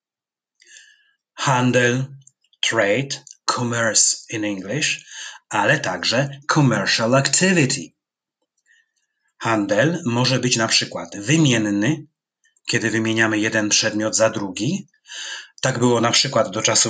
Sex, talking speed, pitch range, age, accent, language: male, 95 wpm, 120-155 Hz, 30-49, native, Polish